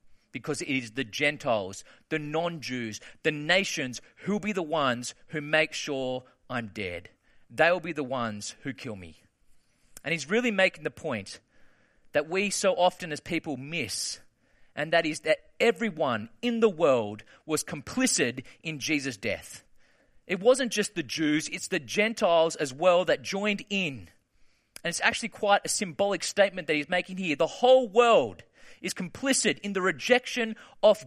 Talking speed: 165 wpm